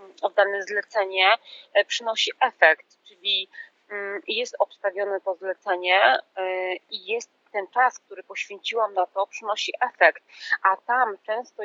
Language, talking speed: Polish, 115 wpm